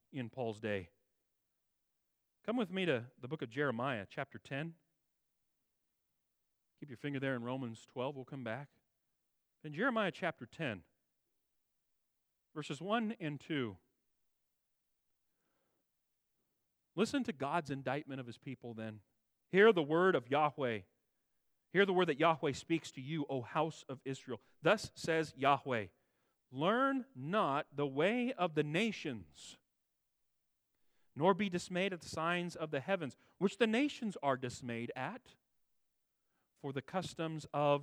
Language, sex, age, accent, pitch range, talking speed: English, male, 40-59, American, 130-195 Hz, 135 wpm